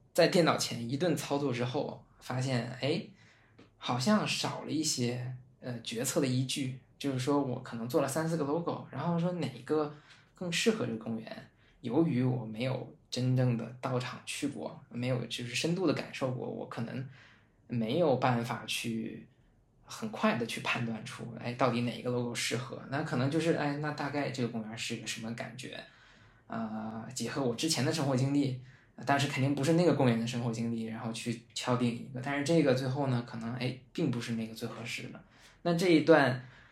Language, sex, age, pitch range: Chinese, male, 20-39, 115-140 Hz